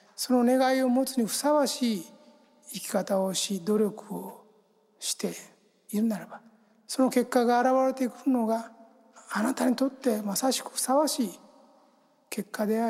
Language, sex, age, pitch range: Japanese, male, 60-79, 205-245 Hz